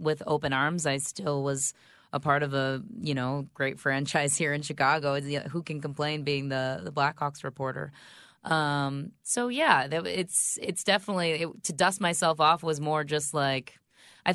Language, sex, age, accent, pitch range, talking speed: English, female, 20-39, American, 135-160 Hz, 170 wpm